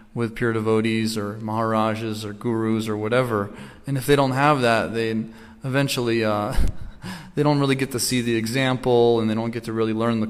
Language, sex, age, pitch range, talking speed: English, male, 20-39, 110-120 Hz, 200 wpm